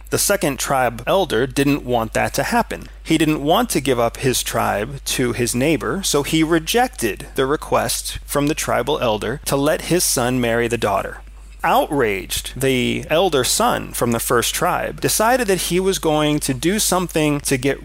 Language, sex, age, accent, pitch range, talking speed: English, male, 30-49, American, 120-165 Hz, 180 wpm